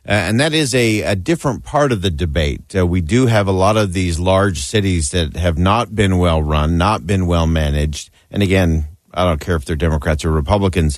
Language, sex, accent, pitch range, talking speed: English, male, American, 85-105 Hz, 225 wpm